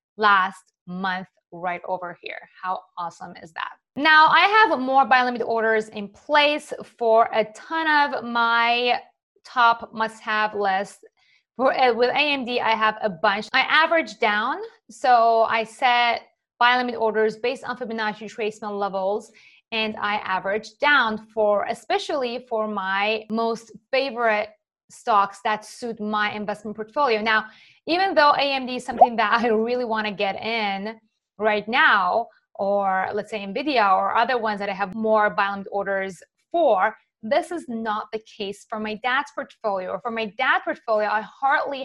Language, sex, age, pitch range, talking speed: English, female, 20-39, 210-265 Hz, 155 wpm